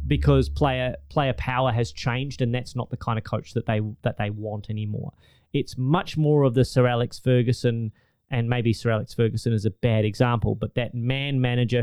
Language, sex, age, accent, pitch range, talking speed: English, male, 20-39, Australian, 115-140 Hz, 200 wpm